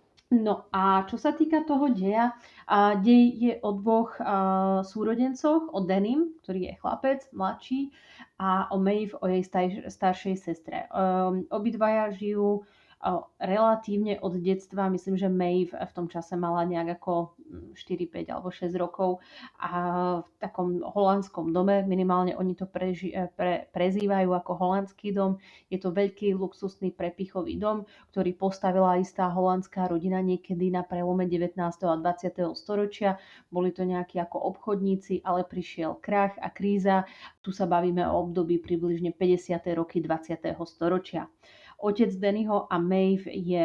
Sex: female